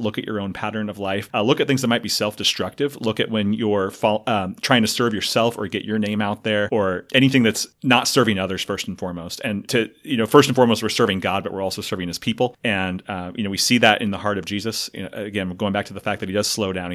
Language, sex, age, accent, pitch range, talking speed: English, male, 30-49, American, 95-110 Hz, 290 wpm